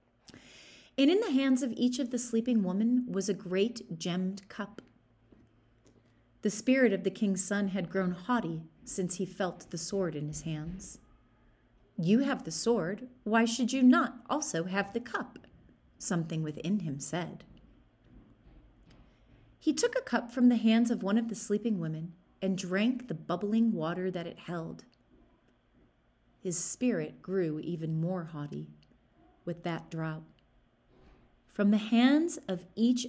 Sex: female